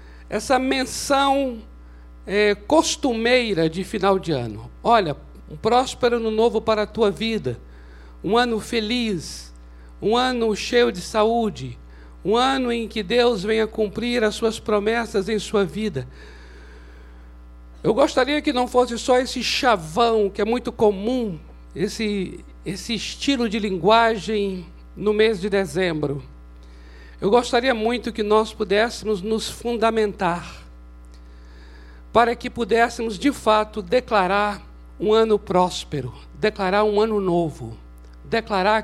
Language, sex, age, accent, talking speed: Portuguese, male, 60-79, Brazilian, 125 wpm